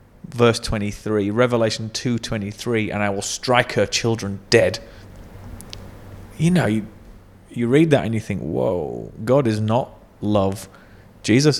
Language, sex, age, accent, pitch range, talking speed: English, male, 30-49, British, 100-115 Hz, 135 wpm